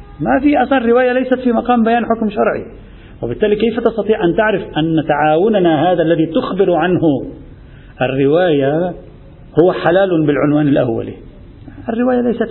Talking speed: 135 wpm